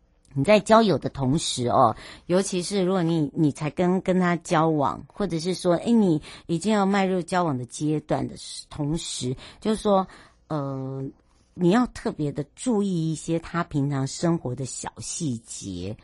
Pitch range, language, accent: 135-180 Hz, Chinese, American